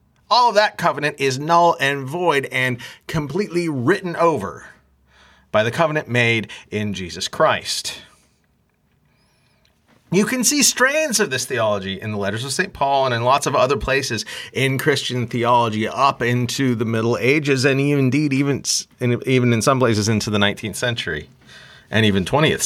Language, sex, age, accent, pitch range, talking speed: English, male, 30-49, American, 120-185 Hz, 160 wpm